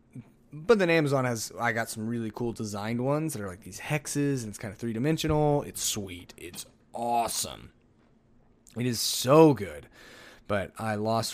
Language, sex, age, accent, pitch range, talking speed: English, male, 20-39, American, 115-145 Hz, 170 wpm